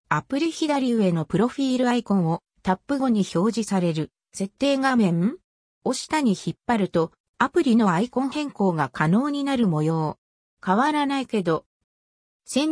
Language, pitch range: Japanese, 185-260 Hz